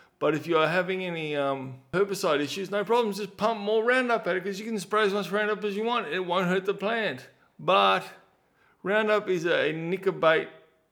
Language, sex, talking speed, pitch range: English, male, 205 wpm, 140-190 Hz